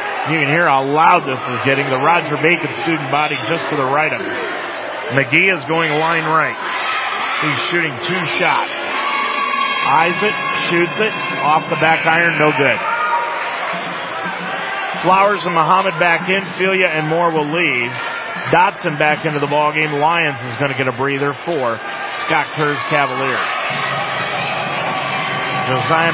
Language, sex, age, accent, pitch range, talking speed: English, male, 30-49, American, 145-175 Hz, 150 wpm